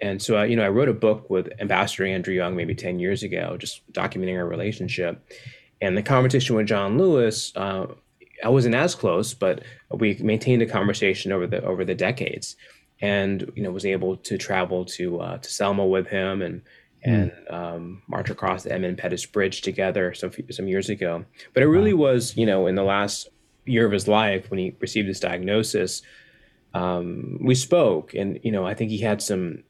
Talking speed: 200 wpm